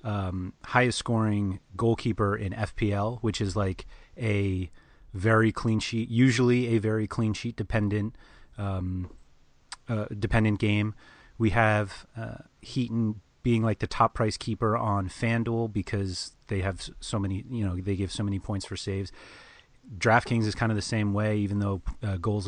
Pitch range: 95-115 Hz